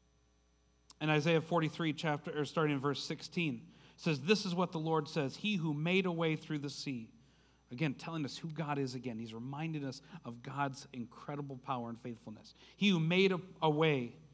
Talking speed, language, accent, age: 190 wpm, English, American, 40-59